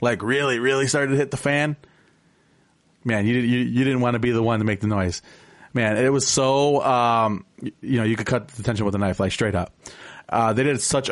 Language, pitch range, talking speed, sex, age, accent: English, 110-135 Hz, 235 wpm, male, 30-49, American